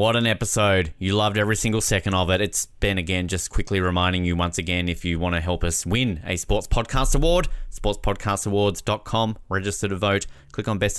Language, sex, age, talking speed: English, male, 20-39, 200 wpm